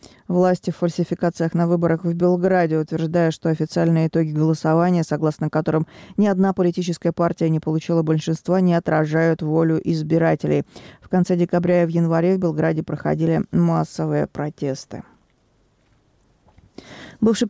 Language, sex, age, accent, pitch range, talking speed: Russian, female, 20-39, native, 160-180 Hz, 125 wpm